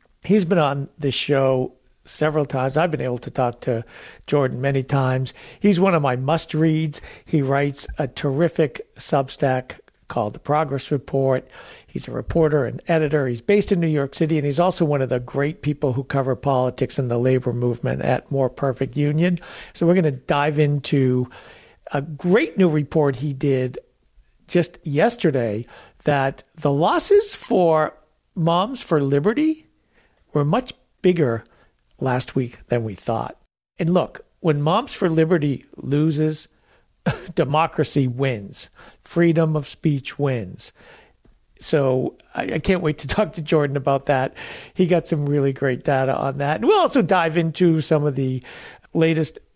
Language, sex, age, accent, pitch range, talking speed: English, male, 60-79, American, 135-165 Hz, 155 wpm